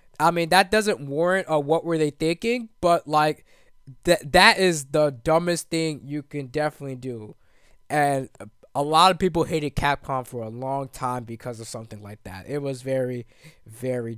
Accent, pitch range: American, 125-160 Hz